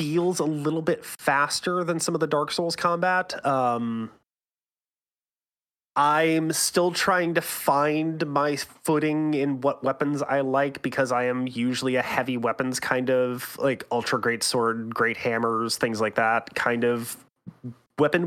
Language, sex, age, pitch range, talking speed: English, male, 30-49, 125-180 Hz, 150 wpm